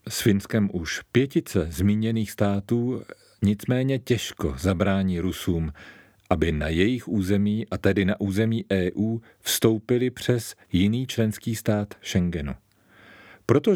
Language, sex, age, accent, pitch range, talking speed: Czech, male, 40-59, native, 100-125 Hz, 115 wpm